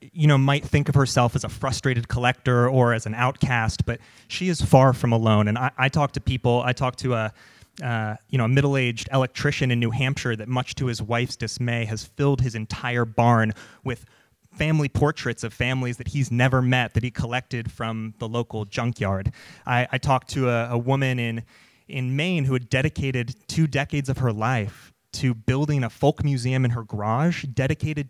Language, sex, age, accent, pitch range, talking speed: English, male, 30-49, American, 115-135 Hz, 200 wpm